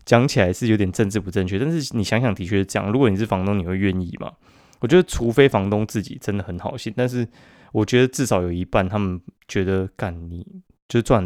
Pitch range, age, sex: 95-125 Hz, 20-39, male